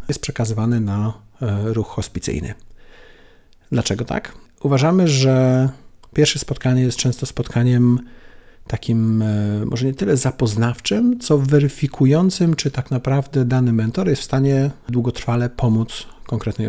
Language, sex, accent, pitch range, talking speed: Polish, male, native, 115-140 Hz, 115 wpm